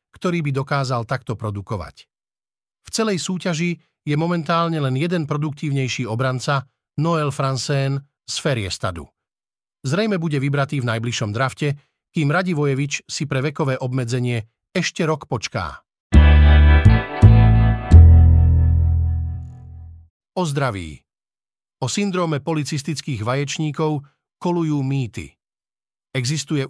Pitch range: 120-160 Hz